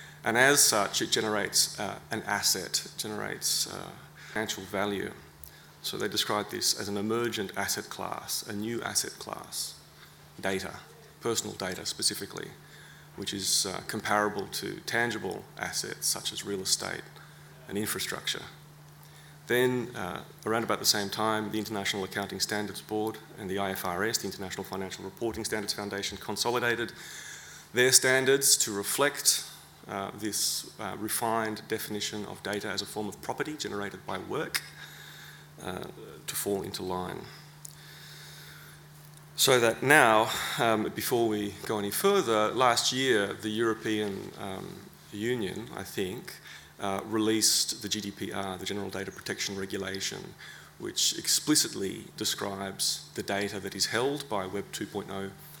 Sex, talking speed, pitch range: male, 135 wpm, 100-115 Hz